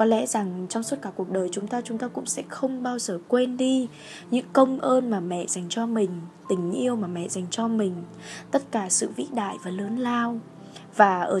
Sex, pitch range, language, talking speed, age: female, 185-250 Hz, Vietnamese, 230 wpm, 10-29